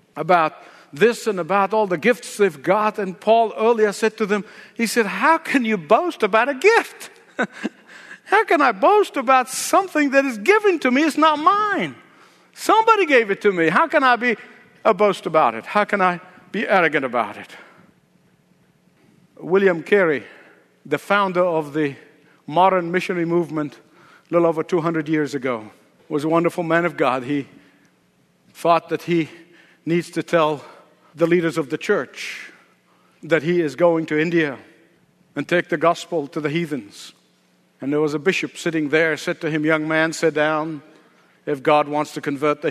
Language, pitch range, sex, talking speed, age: English, 155-210 Hz, male, 175 wpm, 60-79